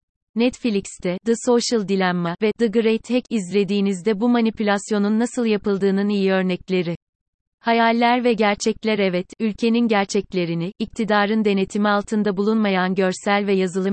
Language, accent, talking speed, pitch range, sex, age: Turkish, native, 120 wpm, 190-220 Hz, female, 30-49